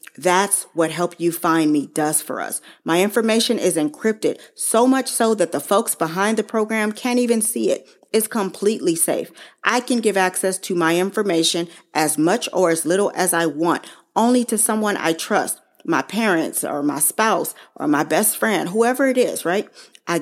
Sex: female